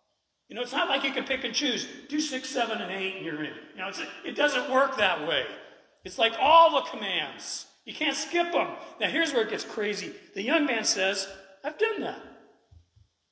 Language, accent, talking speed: English, American, 220 wpm